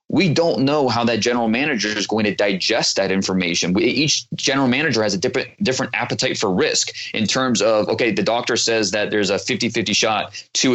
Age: 20-39